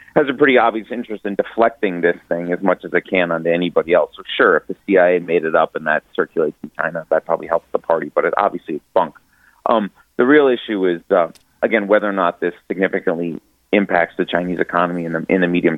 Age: 30-49